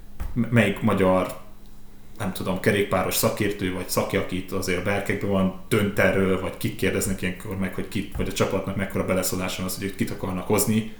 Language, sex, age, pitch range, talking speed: Hungarian, male, 30-49, 95-120 Hz, 170 wpm